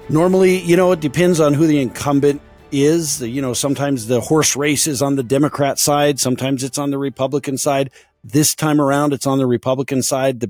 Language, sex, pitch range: English, male, 130-170 Hz